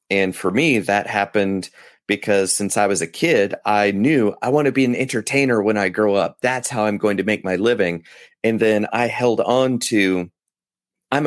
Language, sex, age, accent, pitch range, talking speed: English, male, 30-49, American, 100-120 Hz, 200 wpm